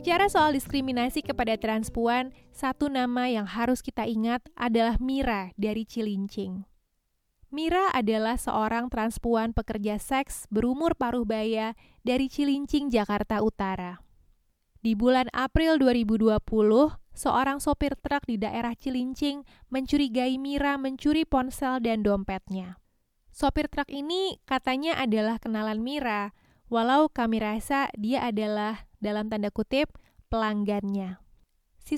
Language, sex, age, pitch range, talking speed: Indonesian, female, 20-39, 220-275 Hz, 115 wpm